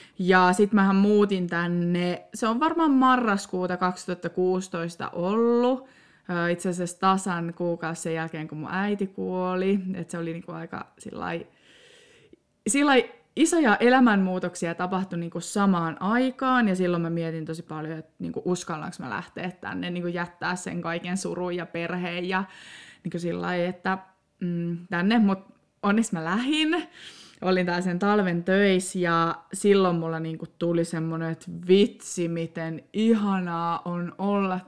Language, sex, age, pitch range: Finnish, female, 20-39, 170-205 Hz